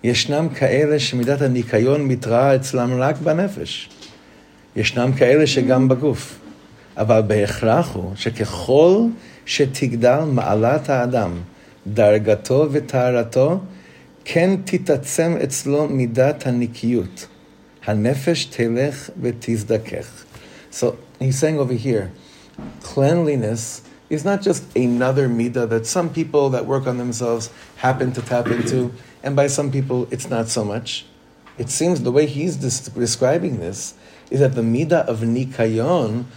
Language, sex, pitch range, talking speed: English, male, 115-145 Hz, 120 wpm